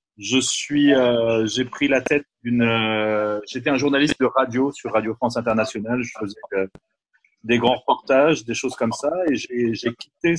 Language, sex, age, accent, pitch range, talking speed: Italian, male, 30-49, French, 110-135 Hz, 185 wpm